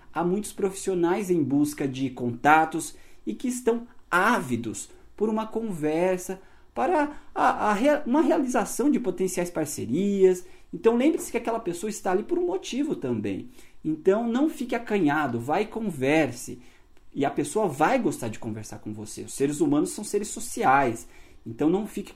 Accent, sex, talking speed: Brazilian, male, 150 wpm